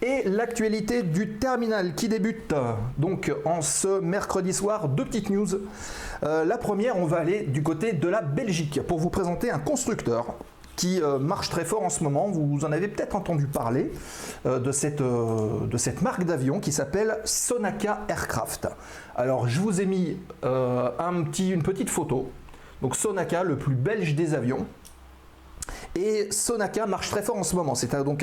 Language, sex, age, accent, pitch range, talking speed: French, male, 30-49, French, 135-195 Hz, 170 wpm